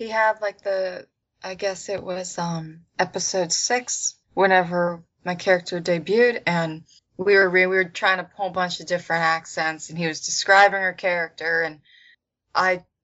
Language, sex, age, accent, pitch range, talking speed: English, female, 20-39, American, 170-195 Hz, 170 wpm